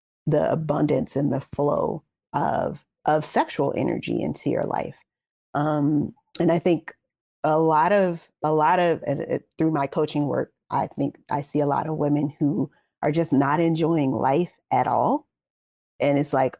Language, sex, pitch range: English, female, 145-165 Hz